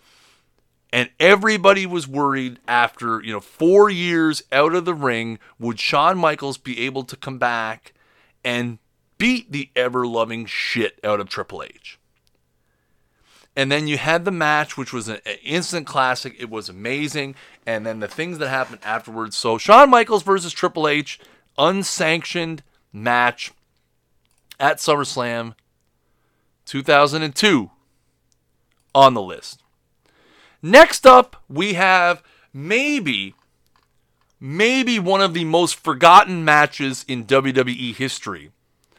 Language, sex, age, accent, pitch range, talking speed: English, male, 30-49, American, 115-170 Hz, 125 wpm